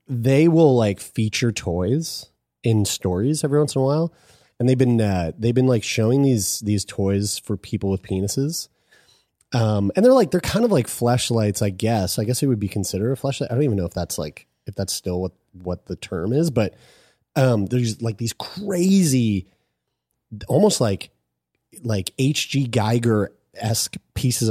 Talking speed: 180 wpm